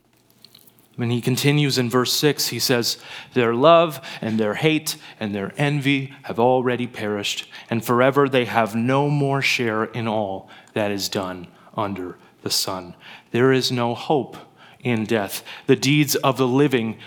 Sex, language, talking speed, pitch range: male, English, 160 wpm, 120-150 Hz